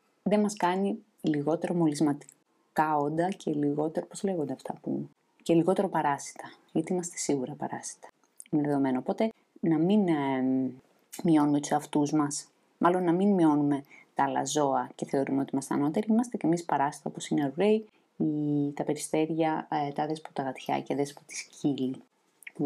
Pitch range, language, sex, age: 150-205 Hz, Greek, female, 20-39